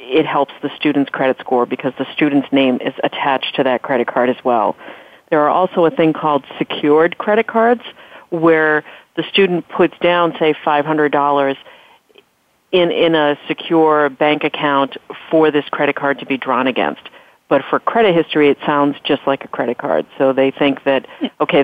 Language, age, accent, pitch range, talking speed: English, 40-59, American, 135-155 Hz, 175 wpm